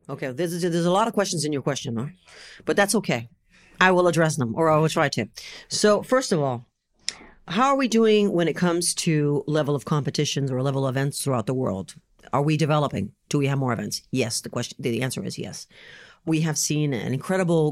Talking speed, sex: 220 wpm, female